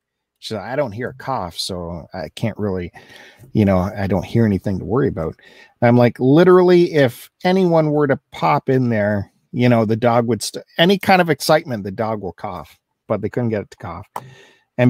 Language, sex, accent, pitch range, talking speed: English, male, American, 100-140 Hz, 200 wpm